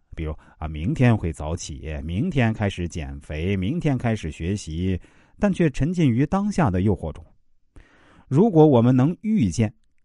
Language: Chinese